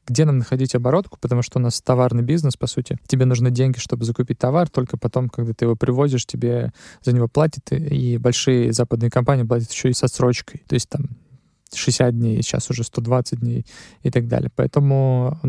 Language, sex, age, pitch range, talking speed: Russian, male, 20-39, 125-140 Hz, 200 wpm